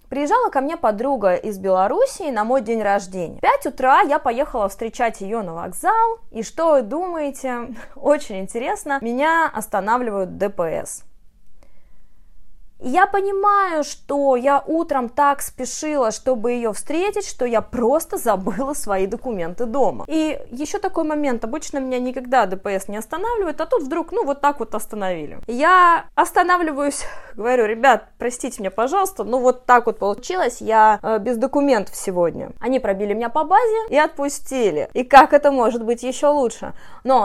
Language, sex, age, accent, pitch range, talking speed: Russian, female, 20-39, native, 220-305 Hz, 155 wpm